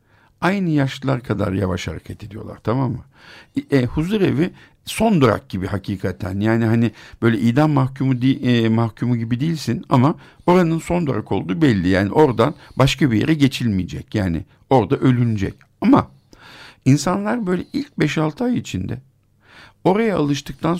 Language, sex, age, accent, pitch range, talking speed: Turkish, male, 60-79, native, 110-155 Hz, 140 wpm